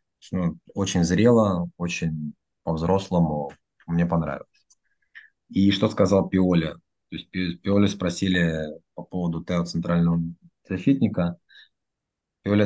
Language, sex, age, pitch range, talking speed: Russian, male, 20-39, 85-100 Hz, 90 wpm